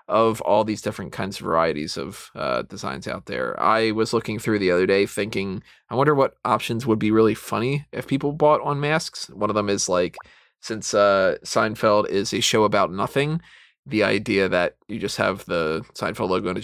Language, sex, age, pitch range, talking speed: English, male, 20-39, 105-140 Hz, 205 wpm